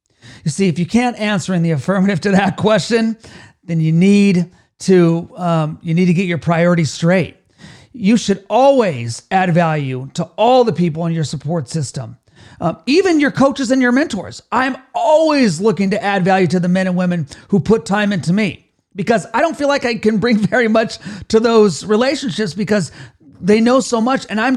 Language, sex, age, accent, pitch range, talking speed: English, male, 40-59, American, 175-230 Hz, 195 wpm